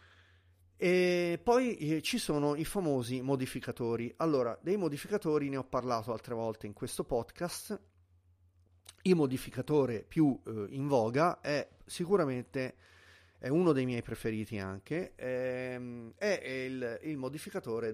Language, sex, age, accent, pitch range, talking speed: Italian, male, 30-49, native, 105-140 Hz, 125 wpm